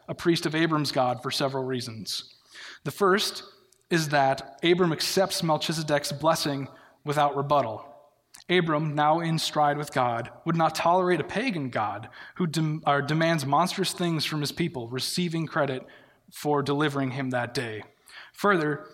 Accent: American